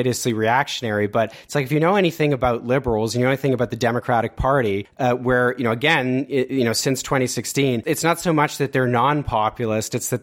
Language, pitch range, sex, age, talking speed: English, 110-135 Hz, male, 30-49, 210 wpm